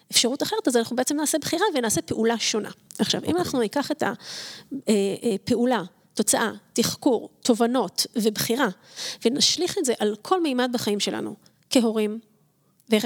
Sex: female